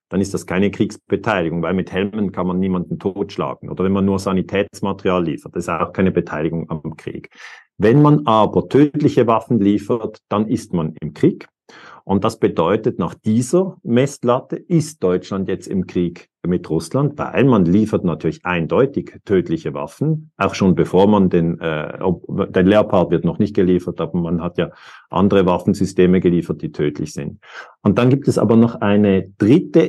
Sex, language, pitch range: male, German, 95-125 Hz